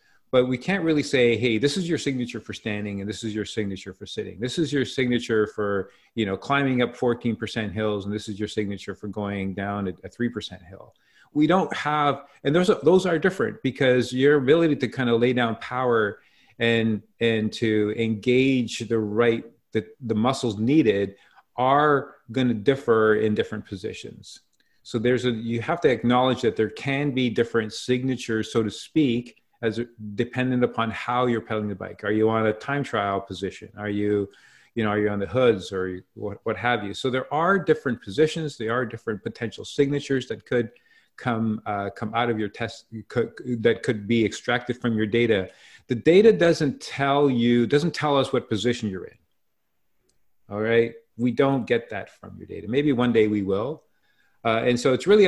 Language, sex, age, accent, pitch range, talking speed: English, male, 40-59, American, 105-130 Hz, 195 wpm